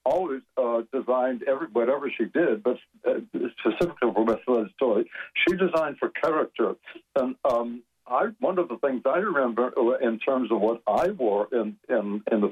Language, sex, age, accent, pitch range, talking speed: English, male, 60-79, American, 120-185 Hz, 175 wpm